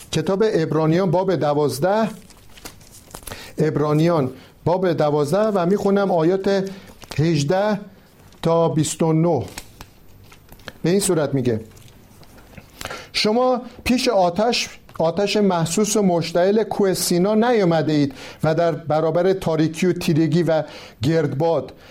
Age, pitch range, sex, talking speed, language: 50-69, 155-205 Hz, male, 95 wpm, Persian